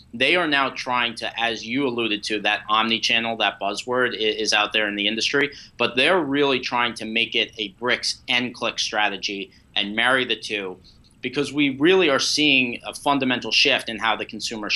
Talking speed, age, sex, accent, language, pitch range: 190 wpm, 30-49, male, American, English, 110-130 Hz